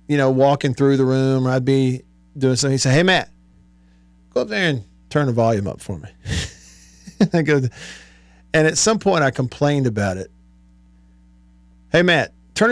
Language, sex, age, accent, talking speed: English, male, 50-69, American, 170 wpm